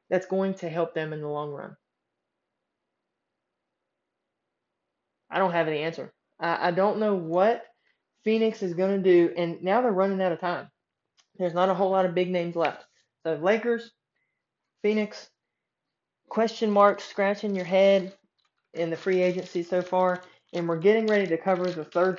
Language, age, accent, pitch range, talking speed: English, 20-39, American, 165-200 Hz, 170 wpm